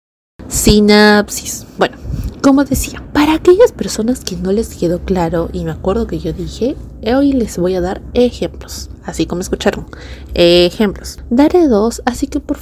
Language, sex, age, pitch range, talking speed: Spanish, female, 30-49, 195-295 Hz, 155 wpm